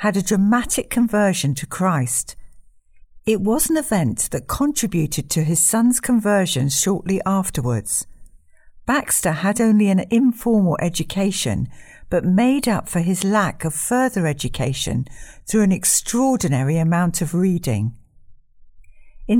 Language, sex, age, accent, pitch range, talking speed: English, female, 60-79, British, 140-225 Hz, 125 wpm